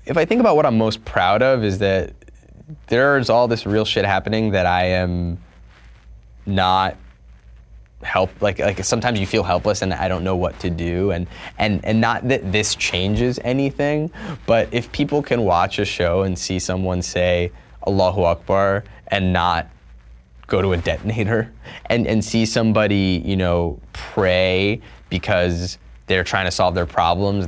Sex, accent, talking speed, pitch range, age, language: male, American, 165 wpm, 85-105 Hz, 20-39, English